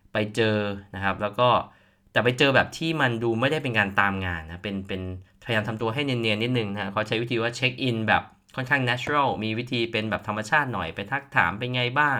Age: 20-39